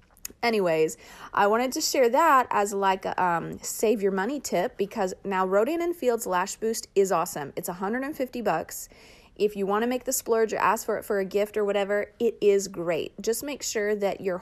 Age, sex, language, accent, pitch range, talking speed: 30-49, female, English, American, 190-235 Hz, 210 wpm